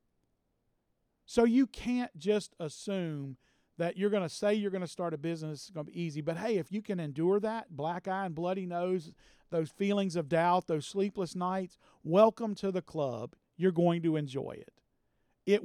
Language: English